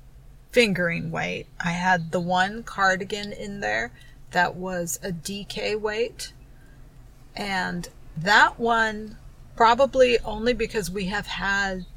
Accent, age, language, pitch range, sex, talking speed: American, 30-49, English, 170-210 Hz, female, 115 wpm